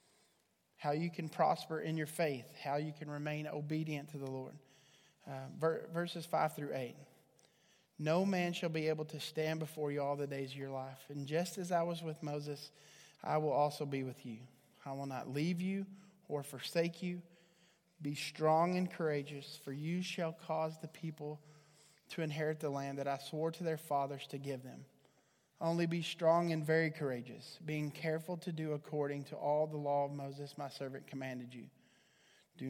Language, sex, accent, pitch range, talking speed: English, male, American, 140-165 Hz, 185 wpm